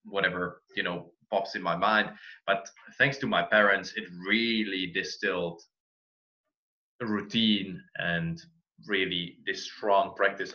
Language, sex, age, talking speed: English, male, 20-39, 125 wpm